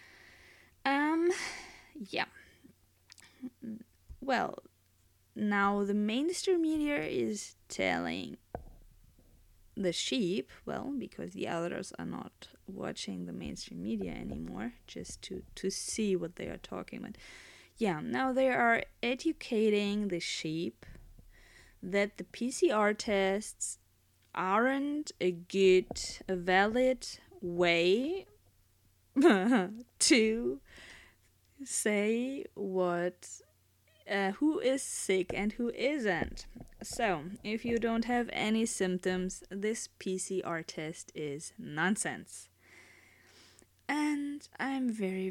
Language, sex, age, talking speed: English, female, 20-39, 95 wpm